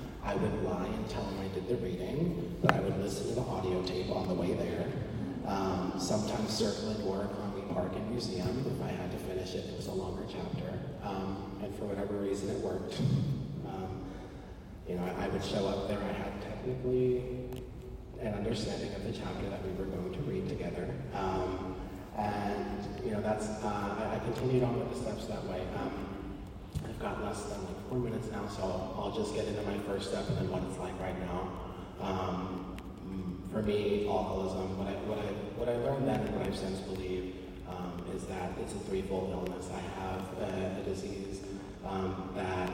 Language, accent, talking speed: English, American, 200 wpm